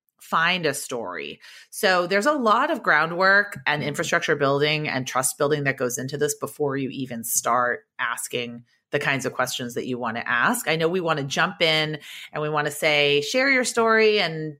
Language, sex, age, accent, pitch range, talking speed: English, female, 30-49, American, 140-185 Hz, 200 wpm